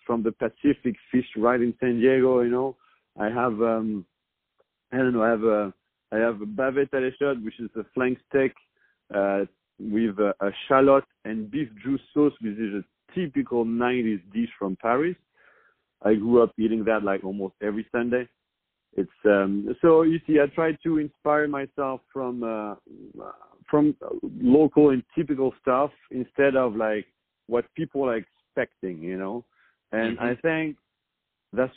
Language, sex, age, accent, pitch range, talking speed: English, male, 50-69, French, 105-135 Hz, 160 wpm